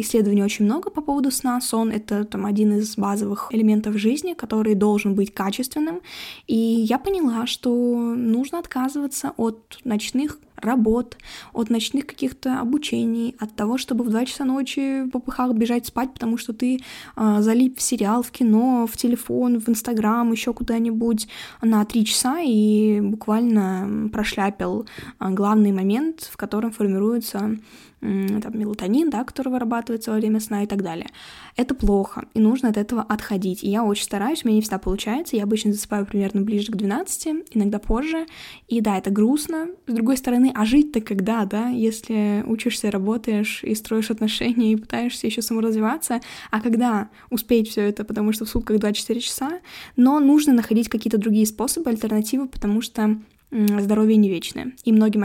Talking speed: 165 wpm